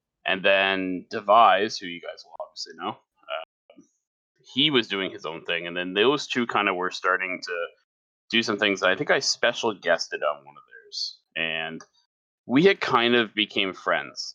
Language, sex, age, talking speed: English, male, 30-49, 185 wpm